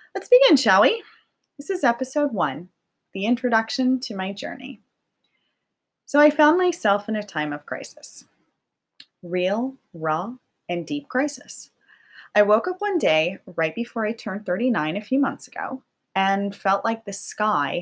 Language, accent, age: English, American, 30-49